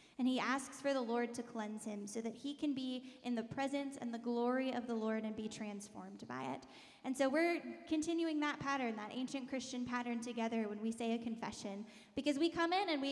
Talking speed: 230 wpm